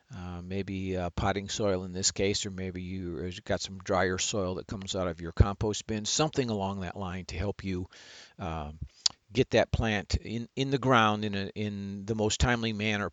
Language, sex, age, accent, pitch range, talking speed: English, male, 50-69, American, 95-110 Hz, 195 wpm